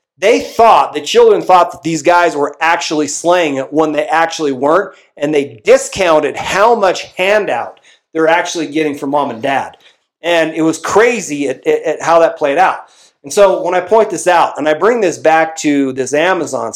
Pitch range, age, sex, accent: 145-175 Hz, 40-59, male, American